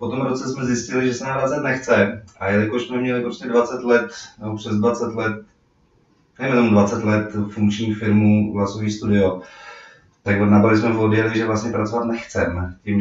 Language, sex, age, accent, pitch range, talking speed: Czech, male, 30-49, native, 100-115 Hz, 165 wpm